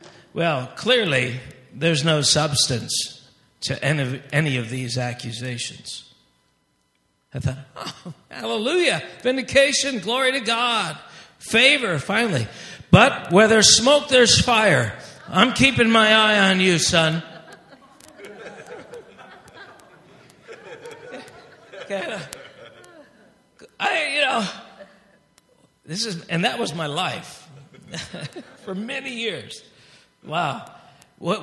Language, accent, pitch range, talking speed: English, American, 130-190 Hz, 95 wpm